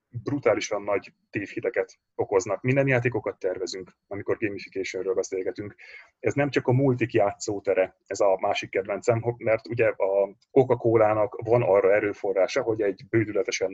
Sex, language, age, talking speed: male, Hungarian, 30-49, 135 wpm